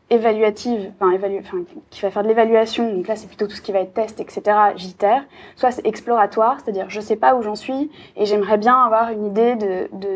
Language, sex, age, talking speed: French, female, 20-39, 230 wpm